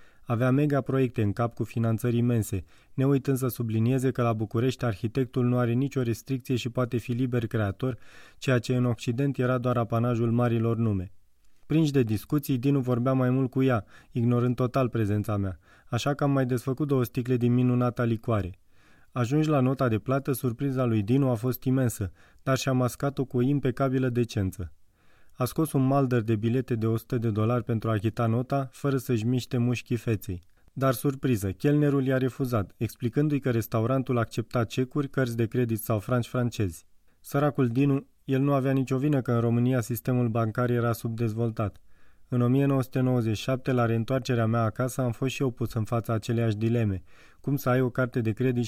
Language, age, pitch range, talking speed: Romanian, 20-39, 115-130 Hz, 180 wpm